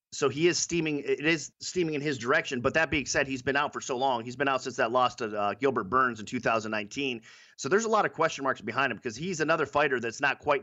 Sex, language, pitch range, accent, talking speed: male, English, 125-145 Hz, American, 280 wpm